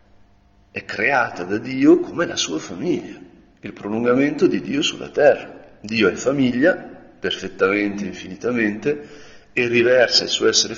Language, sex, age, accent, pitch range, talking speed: Italian, male, 40-59, native, 100-120 Hz, 135 wpm